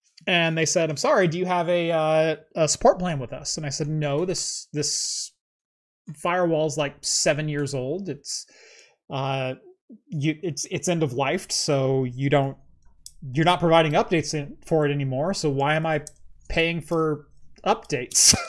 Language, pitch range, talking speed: English, 145-175 Hz, 170 wpm